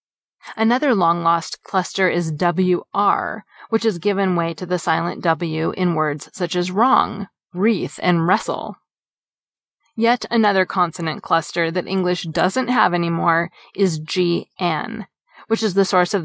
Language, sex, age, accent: English, female, 30-49, American